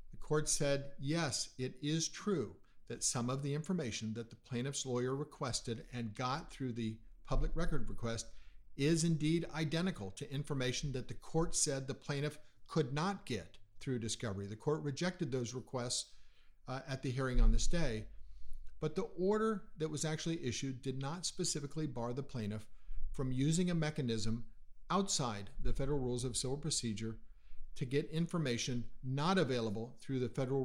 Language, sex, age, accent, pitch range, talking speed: English, male, 50-69, American, 115-155 Hz, 165 wpm